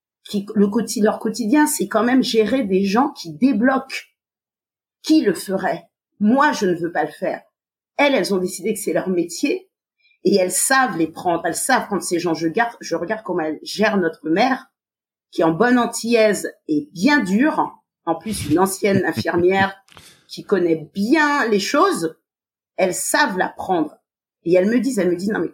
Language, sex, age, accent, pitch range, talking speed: French, female, 40-59, French, 185-270 Hz, 190 wpm